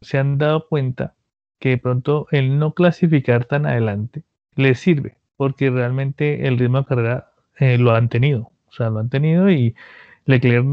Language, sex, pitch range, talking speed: Spanish, male, 125-150 Hz, 175 wpm